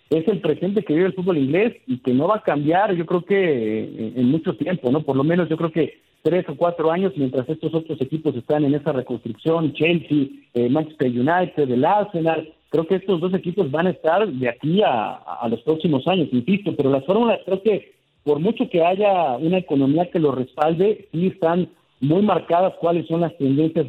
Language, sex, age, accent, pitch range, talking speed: Spanish, male, 50-69, Mexican, 140-185 Hz, 210 wpm